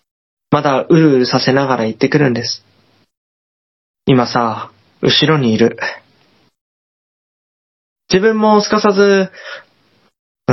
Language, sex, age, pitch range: Japanese, male, 20-39, 125-200 Hz